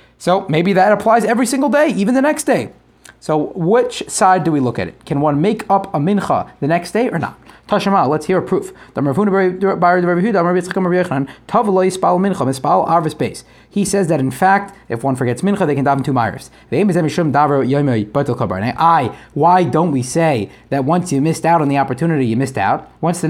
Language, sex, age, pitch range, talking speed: English, male, 30-49, 140-195 Hz, 175 wpm